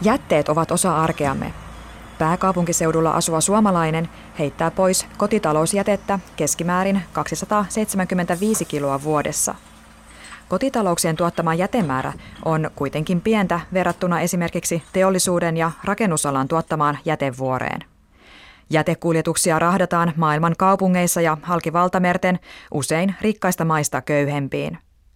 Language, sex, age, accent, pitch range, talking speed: Finnish, female, 20-39, native, 150-190 Hz, 90 wpm